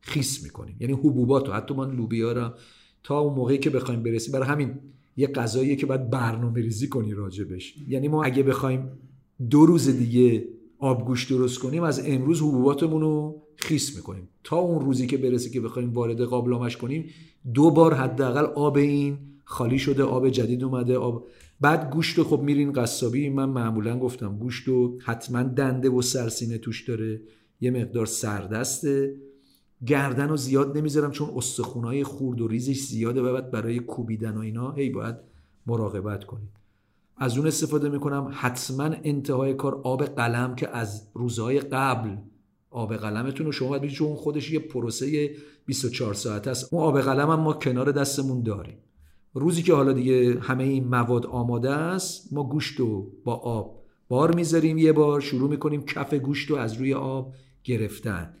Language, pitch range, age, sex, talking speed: Persian, 120-145 Hz, 50-69, male, 160 wpm